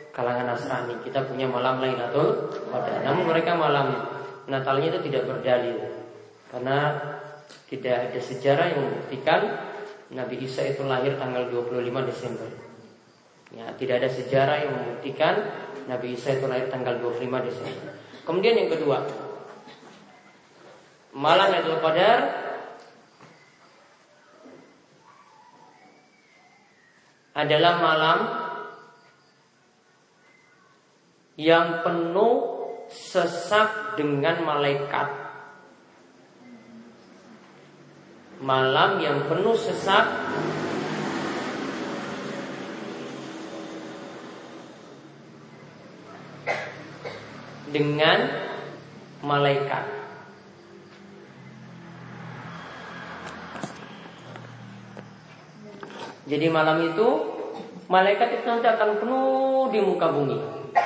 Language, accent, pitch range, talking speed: Indonesian, native, 125-165 Hz, 70 wpm